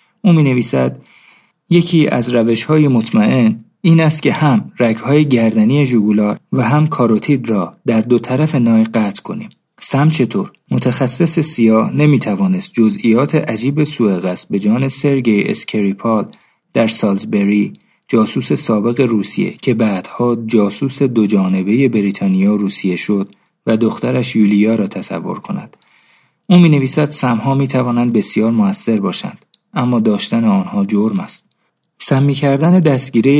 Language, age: Persian, 40-59